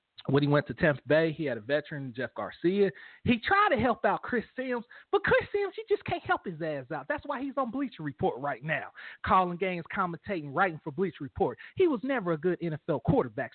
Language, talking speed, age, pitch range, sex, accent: English, 225 wpm, 40-59, 200-280 Hz, male, American